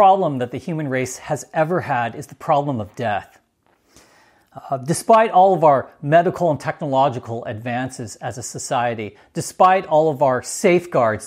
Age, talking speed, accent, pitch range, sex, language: 40-59, 165 wpm, American, 125-165 Hz, male, English